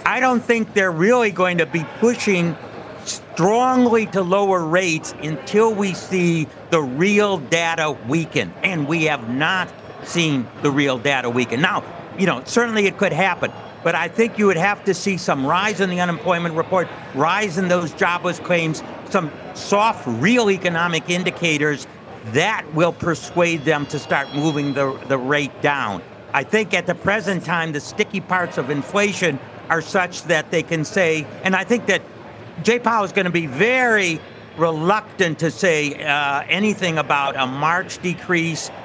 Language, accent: English, American